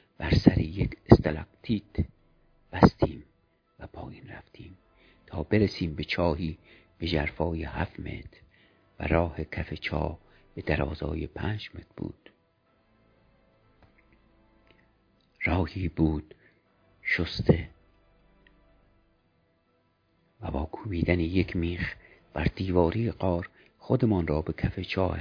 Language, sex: Persian, male